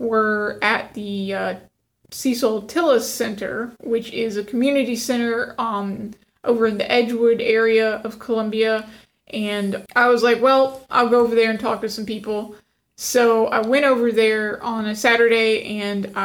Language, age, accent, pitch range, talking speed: English, 20-39, American, 210-240 Hz, 160 wpm